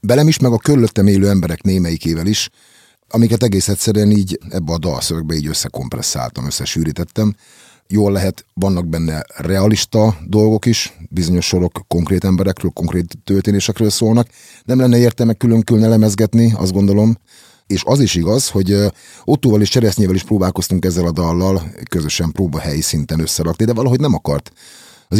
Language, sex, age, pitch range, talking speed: Hungarian, male, 30-49, 85-115 Hz, 150 wpm